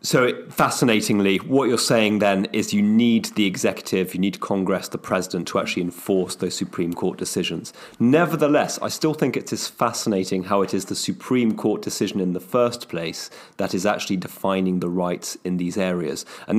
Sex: male